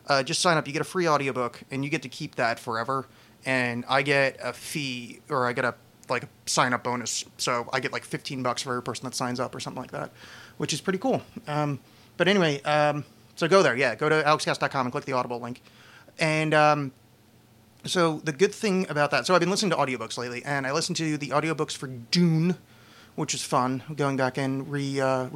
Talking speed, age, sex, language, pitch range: 225 wpm, 30-49, male, English, 120-150 Hz